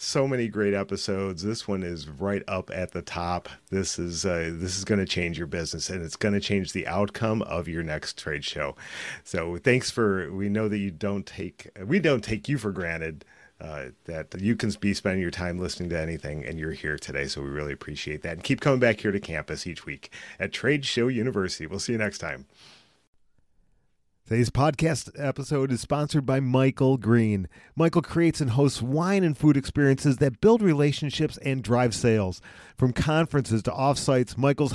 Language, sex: English, male